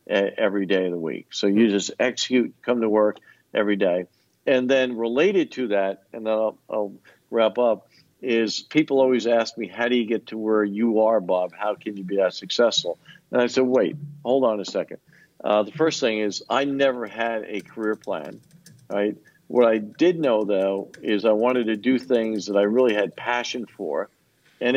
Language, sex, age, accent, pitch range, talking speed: English, male, 50-69, American, 105-125 Hz, 200 wpm